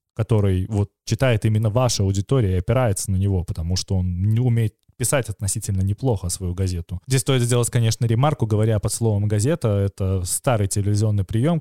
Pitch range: 105-125 Hz